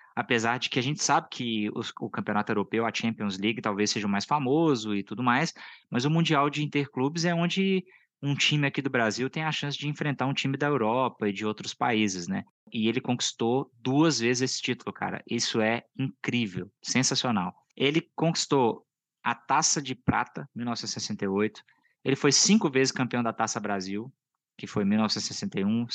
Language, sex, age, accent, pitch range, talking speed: English, male, 20-39, Brazilian, 110-145 Hz, 185 wpm